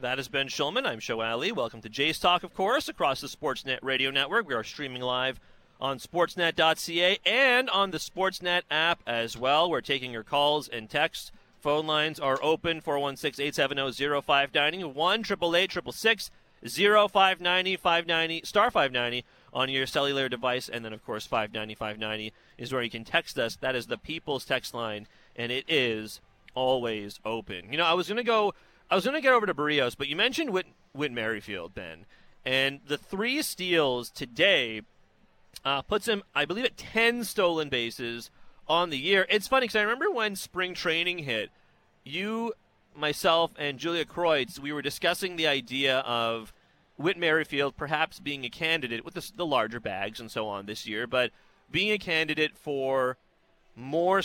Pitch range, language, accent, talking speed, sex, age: 125-175 Hz, English, American, 170 wpm, male, 40-59